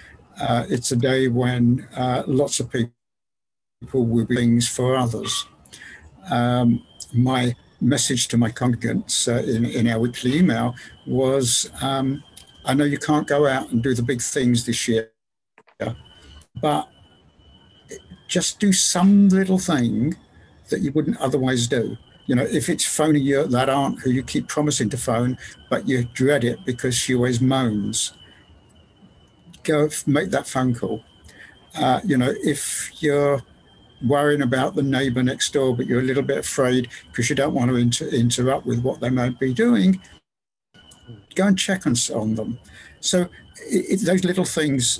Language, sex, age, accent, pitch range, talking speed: English, male, 60-79, British, 120-145 Hz, 155 wpm